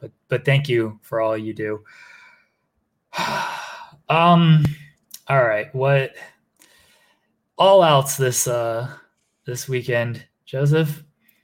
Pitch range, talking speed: 115-150 Hz, 100 wpm